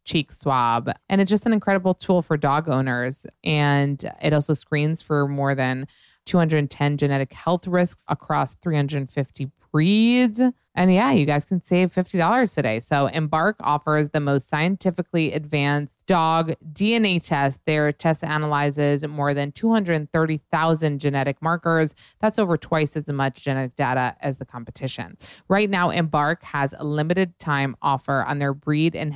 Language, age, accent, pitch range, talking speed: English, 20-39, American, 140-170 Hz, 160 wpm